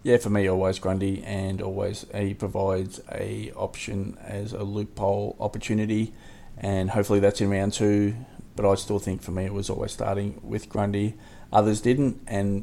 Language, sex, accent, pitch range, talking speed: English, male, Australian, 100-110 Hz, 170 wpm